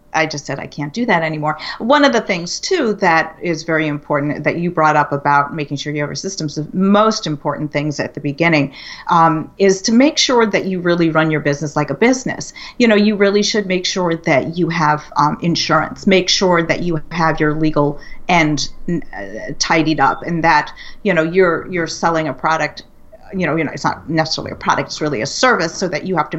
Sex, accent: female, American